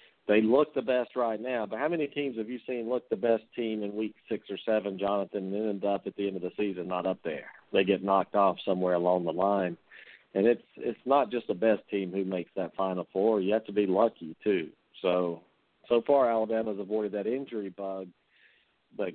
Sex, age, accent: male, 50-69, American